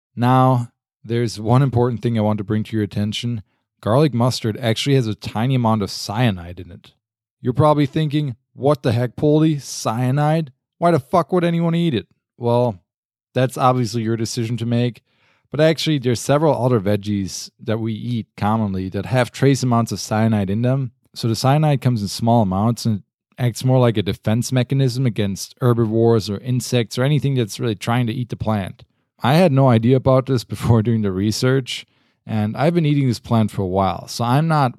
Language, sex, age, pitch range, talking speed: English, male, 20-39, 110-130 Hz, 195 wpm